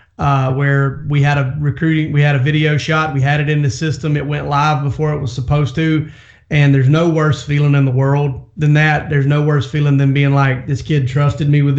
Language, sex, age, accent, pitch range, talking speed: English, male, 30-49, American, 140-155 Hz, 245 wpm